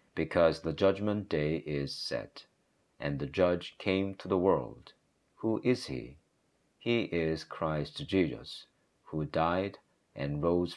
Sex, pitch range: male, 70-90 Hz